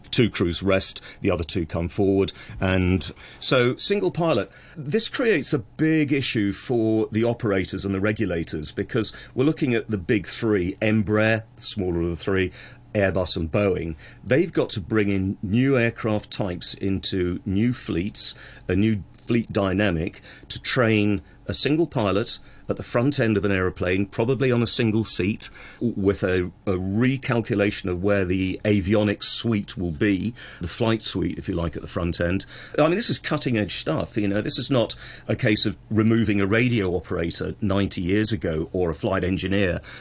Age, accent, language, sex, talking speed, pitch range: 40-59, British, English, male, 175 wpm, 95-115 Hz